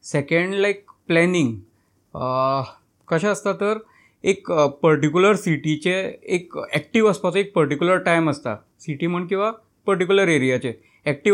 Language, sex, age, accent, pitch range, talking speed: Hindi, male, 20-39, native, 145-185 Hz, 95 wpm